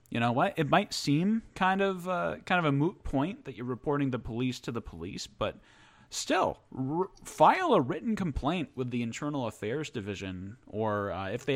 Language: English